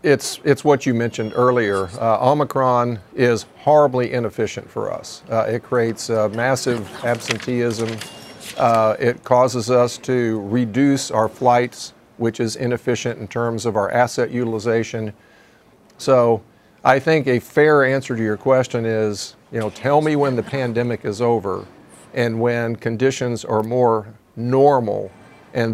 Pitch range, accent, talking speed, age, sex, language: 110-130 Hz, American, 140 wpm, 50-69, male, English